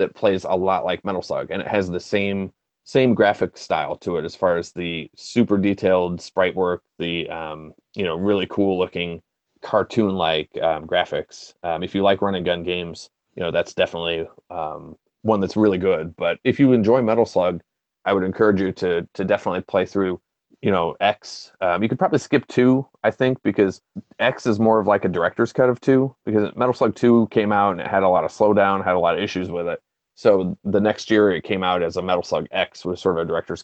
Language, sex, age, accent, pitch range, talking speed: English, male, 30-49, American, 90-105 Hz, 225 wpm